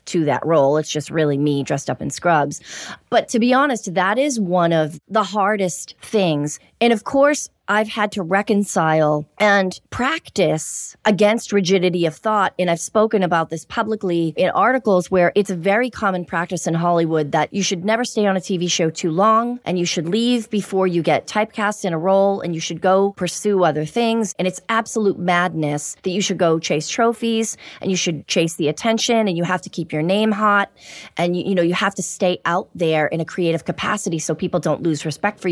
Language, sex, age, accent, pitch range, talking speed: English, female, 30-49, American, 165-205 Hz, 210 wpm